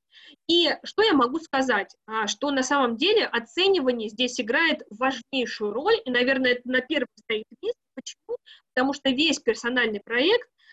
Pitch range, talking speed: 235-330 Hz, 155 wpm